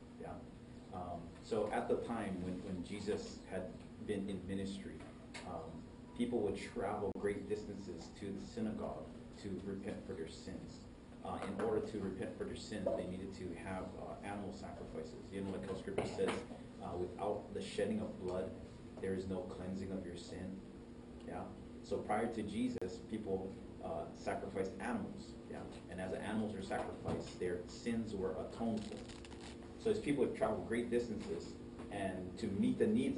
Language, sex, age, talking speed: English, male, 30-49, 170 wpm